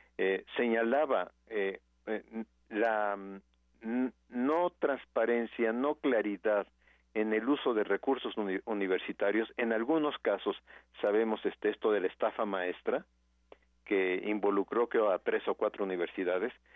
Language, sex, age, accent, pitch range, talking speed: Spanish, male, 50-69, Mexican, 90-115 Hz, 125 wpm